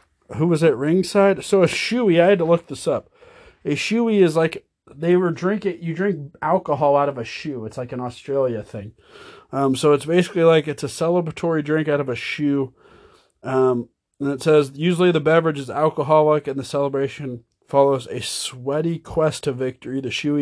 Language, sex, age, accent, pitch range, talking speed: English, male, 30-49, American, 135-175 Hz, 190 wpm